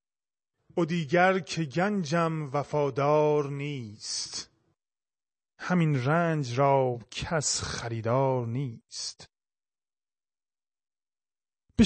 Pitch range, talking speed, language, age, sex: 125-170 Hz, 65 wpm, Persian, 30-49, male